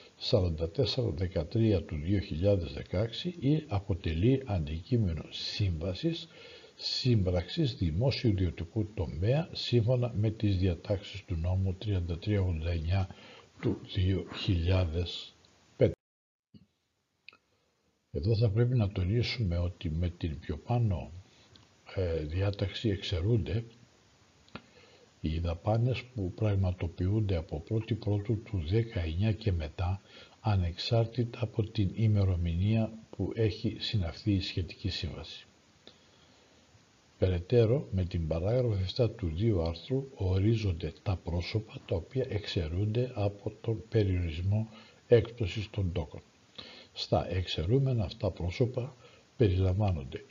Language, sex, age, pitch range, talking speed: Greek, male, 60-79, 90-115 Hz, 95 wpm